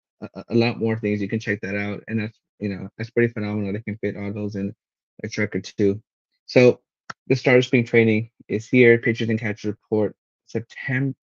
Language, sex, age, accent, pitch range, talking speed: English, male, 20-39, American, 105-120 Hz, 210 wpm